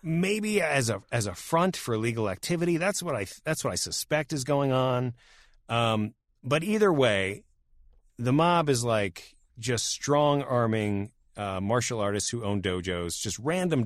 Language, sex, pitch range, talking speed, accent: English, male, 100-135 Hz, 165 wpm, American